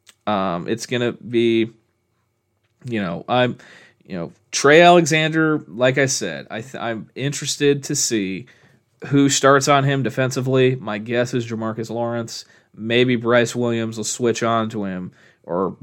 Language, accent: English, American